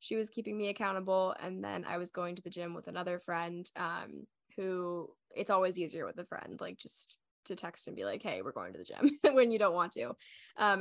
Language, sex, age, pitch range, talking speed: English, female, 10-29, 180-215 Hz, 240 wpm